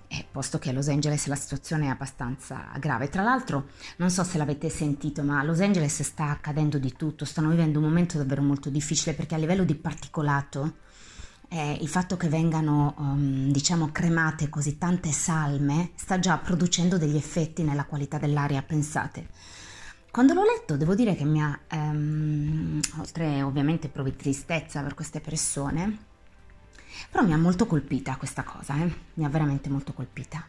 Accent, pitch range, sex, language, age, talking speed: native, 140-165 Hz, female, Italian, 20-39, 170 wpm